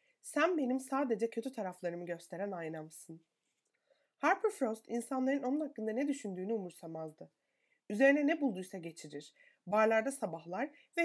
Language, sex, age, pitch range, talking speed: Turkish, female, 30-49, 175-275 Hz, 120 wpm